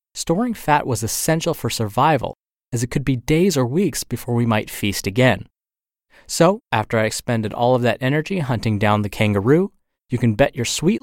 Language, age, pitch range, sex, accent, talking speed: English, 30-49, 110-160 Hz, male, American, 190 wpm